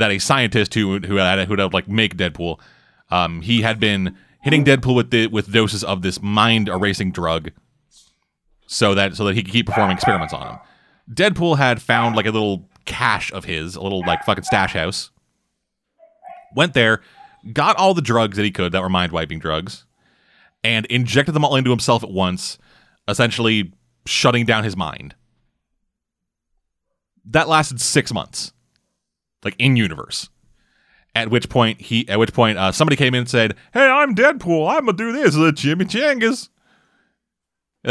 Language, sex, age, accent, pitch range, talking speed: English, male, 30-49, American, 90-120 Hz, 175 wpm